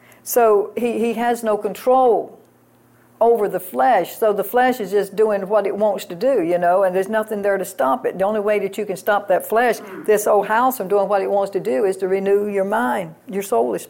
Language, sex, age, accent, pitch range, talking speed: English, female, 60-79, American, 200-230 Hz, 235 wpm